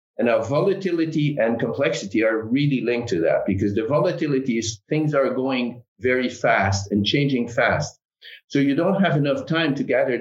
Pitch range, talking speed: 115-150 Hz, 175 wpm